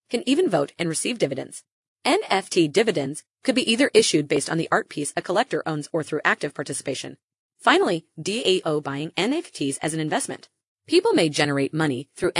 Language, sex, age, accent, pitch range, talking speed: English, female, 30-49, American, 155-255 Hz, 175 wpm